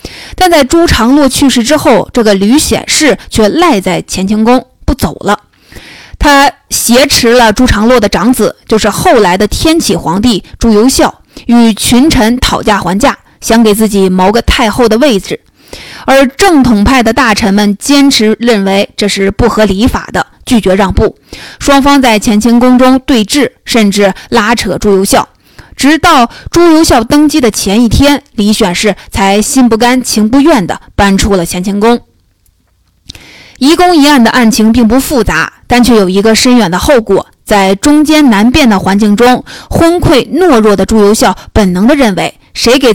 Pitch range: 205-275 Hz